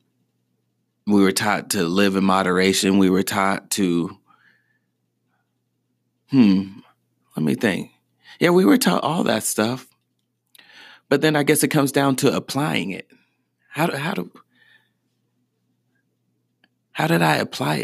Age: 40-59